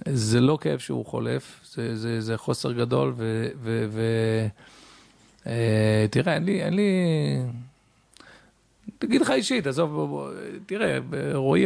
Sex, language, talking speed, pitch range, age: male, Hebrew, 105 wpm, 110-160 Hz, 40-59